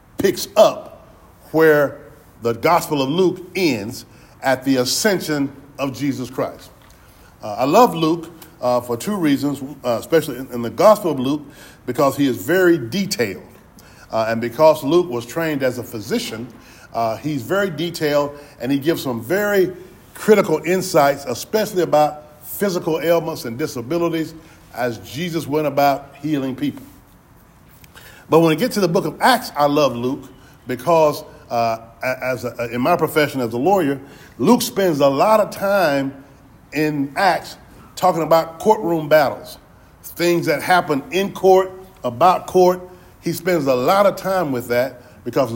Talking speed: 155 wpm